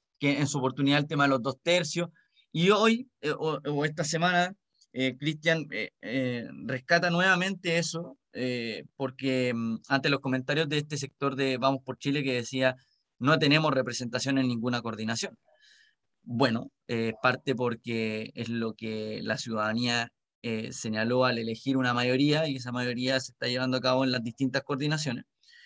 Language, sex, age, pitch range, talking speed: Spanish, male, 20-39, 130-175 Hz, 165 wpm